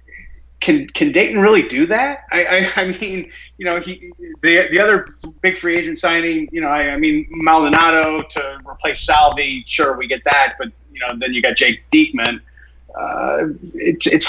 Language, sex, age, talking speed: English, male, 30-49, 185 wpm